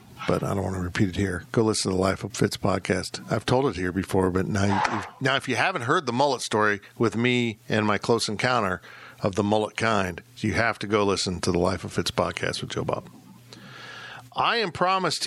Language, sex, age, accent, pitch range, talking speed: English, male, 50-69, American, 105-130 Hz, 230 wpm